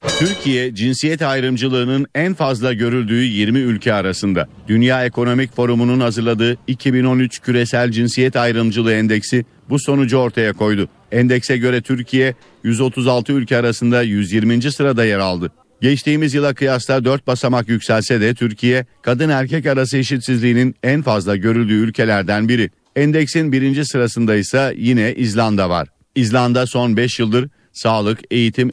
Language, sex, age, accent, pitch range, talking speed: Turkish, male, 50-69, native, 110-130 Hz, 125 wpm